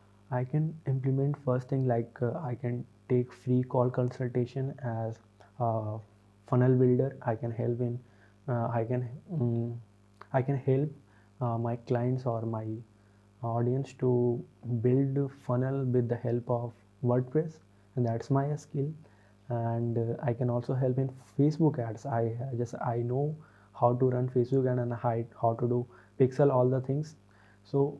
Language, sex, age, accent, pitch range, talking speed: Hindi, male, 20-39, native, 115-135 Hz, 155 wpm